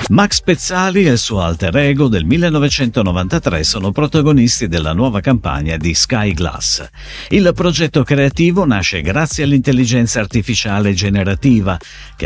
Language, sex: Italian, male